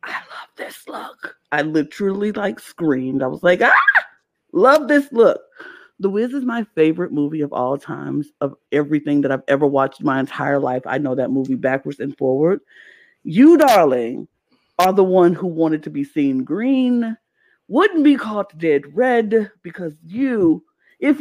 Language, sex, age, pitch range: English, female, 50-69, 145-195 Hz